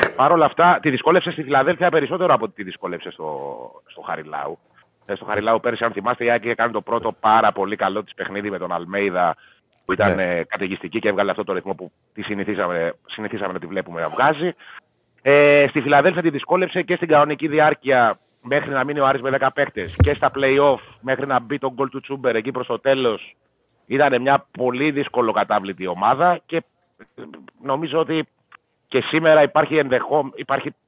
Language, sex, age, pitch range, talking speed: Greek, male, 30-49, 115-145 Hz, 185 wpm